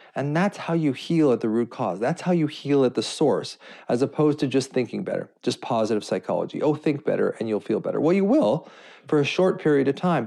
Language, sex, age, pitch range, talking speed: English, male, 40-59, 115-150 Hz, 240 wpm